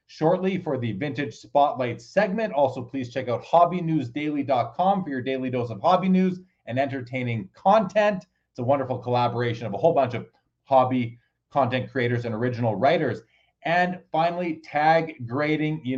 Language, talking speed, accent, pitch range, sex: English, 155 wpm, American, 130-170 Hz, male